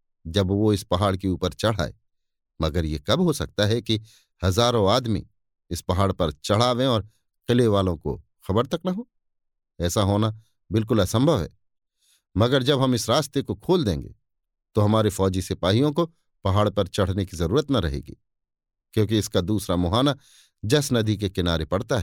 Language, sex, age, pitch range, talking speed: Hindi, male, 50-69, 95-135 Hz, 170 wpm